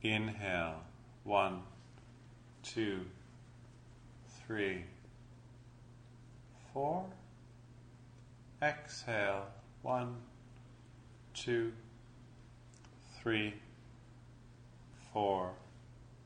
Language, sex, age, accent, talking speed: English, male, 40-59, American, 35 wpm